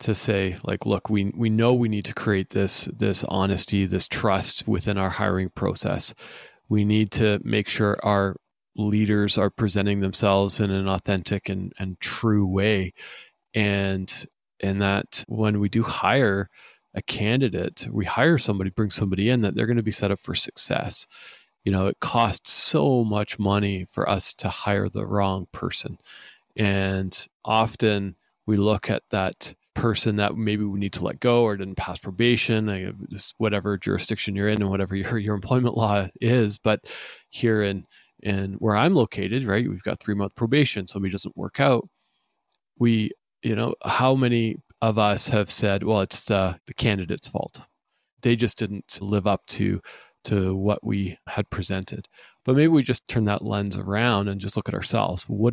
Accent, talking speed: American, 175 wpm